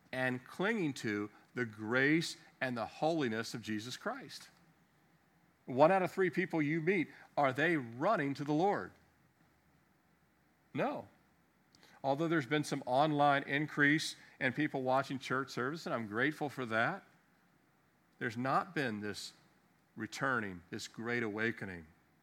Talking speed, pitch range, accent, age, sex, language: 130 wpm, 125-165 Hz, American, 50-69, male, English